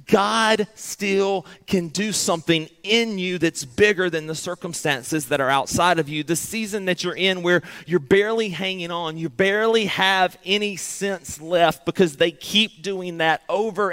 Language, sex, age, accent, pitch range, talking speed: English, male, 30-49, American, 170-205 Hz, 170 wpm